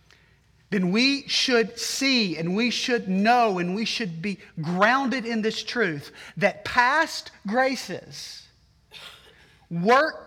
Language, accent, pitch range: English, American, 145-230 Hz